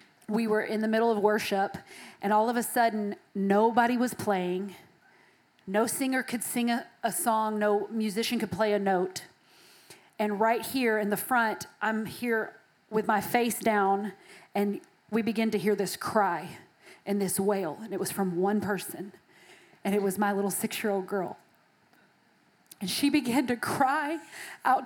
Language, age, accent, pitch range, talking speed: English, 40-59, American, 205-240 Hz, 165 wpm